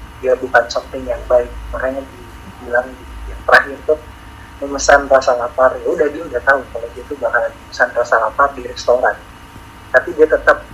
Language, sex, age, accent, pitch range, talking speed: Indonesian, male, 30-49, native, 105-155 Hz, 180 wpm